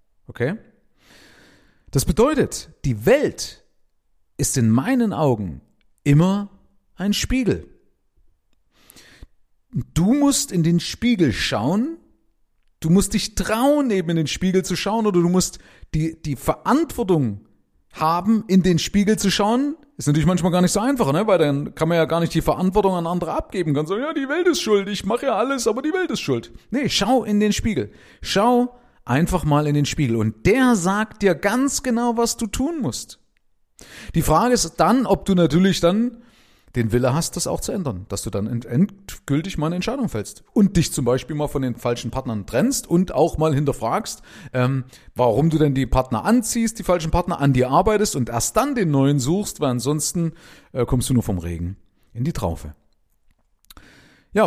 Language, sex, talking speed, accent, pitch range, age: German, male, 180 wpm, German, 130-210 Hz, 40-59